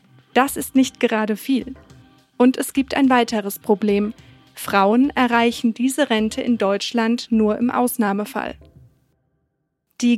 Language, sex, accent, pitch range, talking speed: German, female, German, 220-260 Hz, 125 wpm